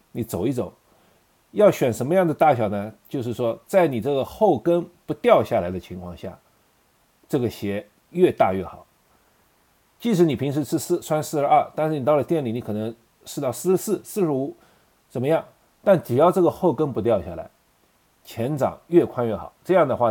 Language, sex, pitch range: Chinese, male, 110-165 Hz